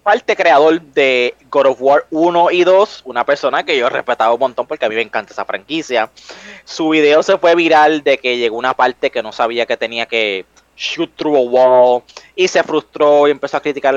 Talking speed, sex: 220 wpm, male